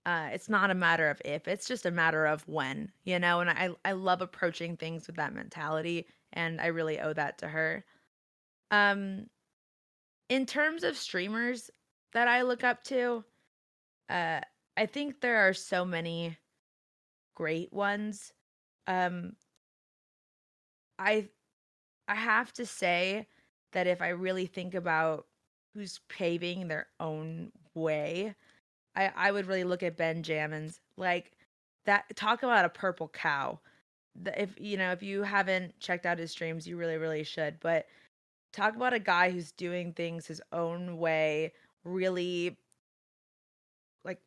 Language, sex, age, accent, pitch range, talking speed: English, female, 20-39, American, 165-200 Hz, 150 wpm